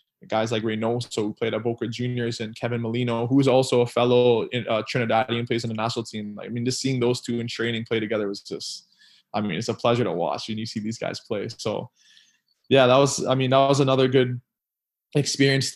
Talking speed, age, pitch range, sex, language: 235 wpm, 20-39, 115-130 Hz, male, English